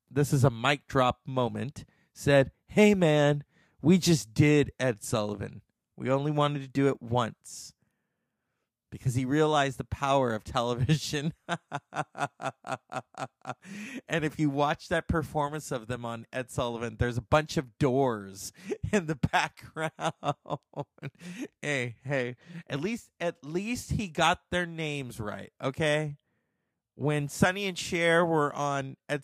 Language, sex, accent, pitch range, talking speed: English, male, American, 130-160 Hz, 140 wpm